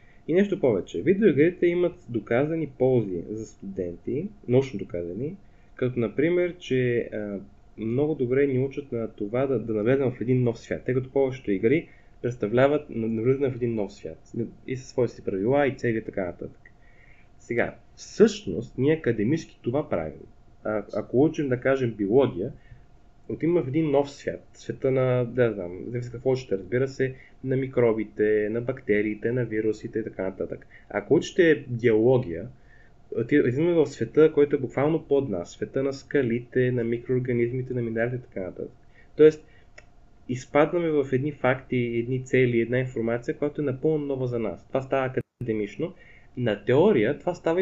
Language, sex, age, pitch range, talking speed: Bulgarian, male, 20-39, 115-140 Hz, 155 wpm